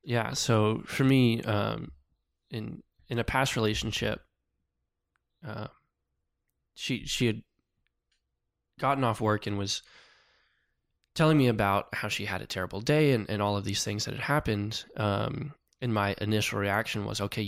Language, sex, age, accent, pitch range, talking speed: English, male, 20-39, American, 100-120 Hz, 150 wpm